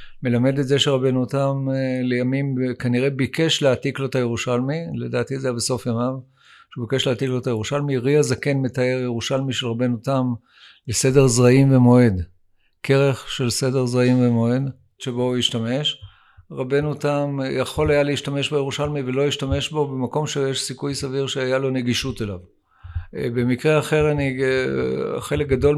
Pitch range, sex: 120-135 Hz, male